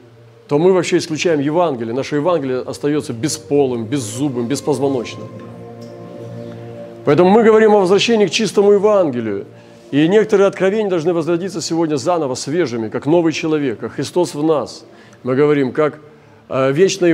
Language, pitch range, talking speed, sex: Russian, 130-175 Hz, 135 wpm, male